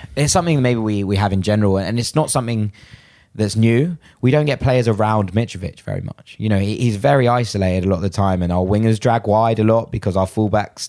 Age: 20-39